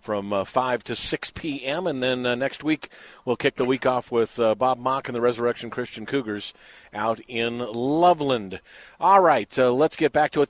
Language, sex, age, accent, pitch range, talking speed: English, male, 50-69, American, 120-145 Hz, 205 wpm